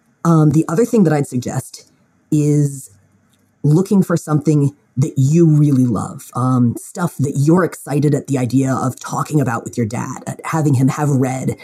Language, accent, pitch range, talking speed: English, American, 140-180 Hz, 175 wpm